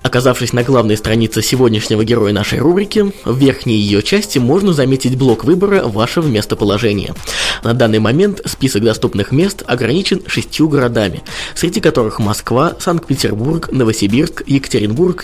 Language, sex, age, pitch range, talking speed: Russian, male, 20-39, 110-155 Hz, 130 wpm